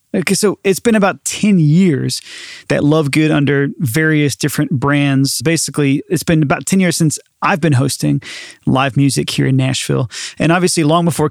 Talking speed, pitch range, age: 175 wpm, 145-170 Hz, 30-49